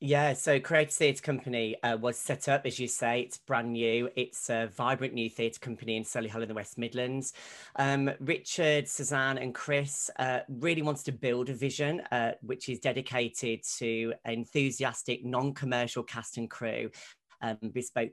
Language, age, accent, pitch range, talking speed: English, 30-49, British, 115-135 Hz, 170 wpm